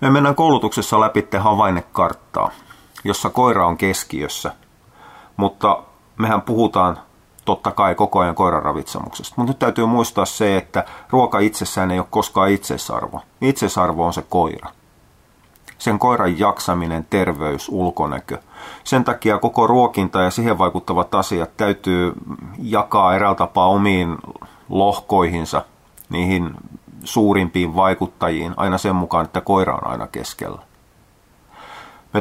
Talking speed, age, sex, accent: 120 wpm, 30-49, male, native